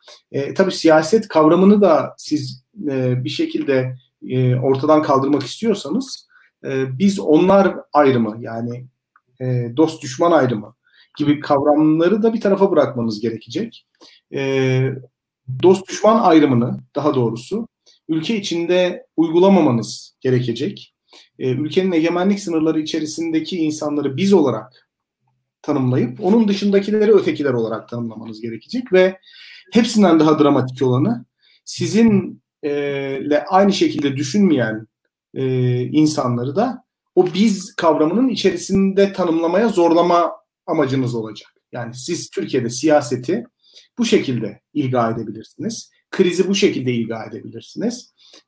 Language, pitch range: Turkish, 130-195 Hz